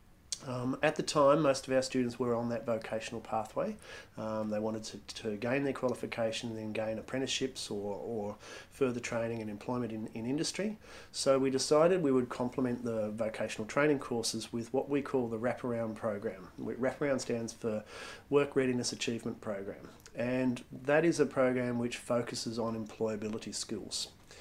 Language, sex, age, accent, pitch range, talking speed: English, male, 40-59, Australian, 110-130 Hz, 165 wpm